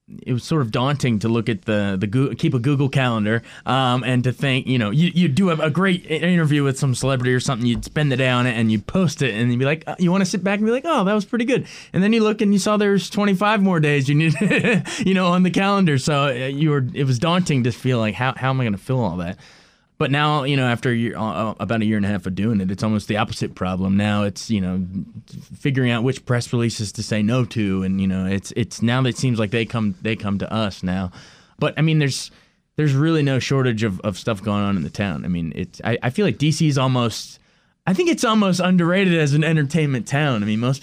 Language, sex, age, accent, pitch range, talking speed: English, male, 20-39, American, 110-155 Hz, 270 wpm